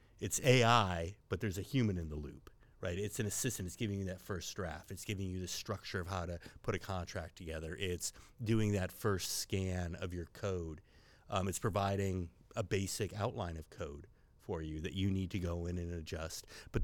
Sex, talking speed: male, 205 wpm